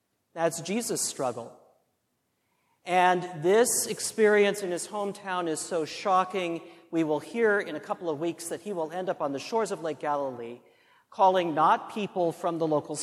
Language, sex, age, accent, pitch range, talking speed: English, male, 40-59, American, 135-175 Hz, 170 wpm